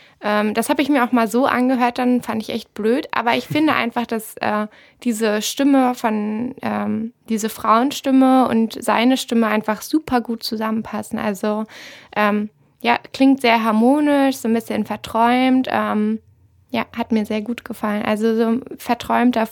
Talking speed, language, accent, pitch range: 165 wpm, German, German, 220-250 Hz